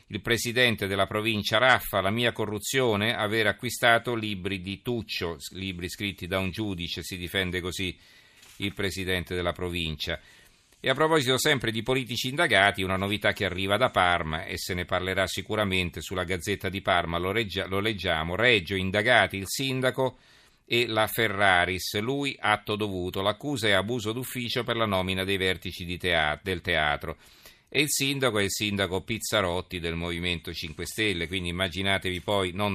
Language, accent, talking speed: Italian, native, 160 wpm